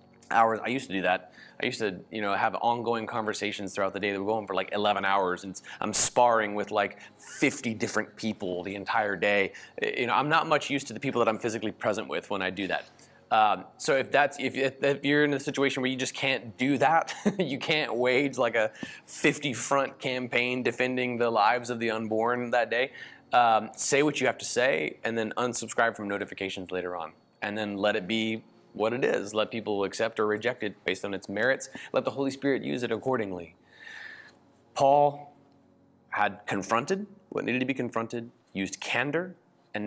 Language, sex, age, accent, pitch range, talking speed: English, male, 20-39, American, 105-130 Hz, 205 wpm